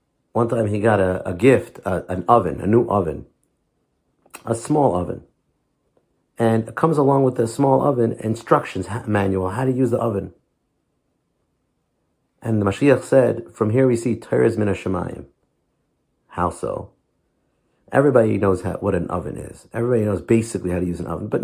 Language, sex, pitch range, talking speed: English, male, 110-170 Hz, 165 wpm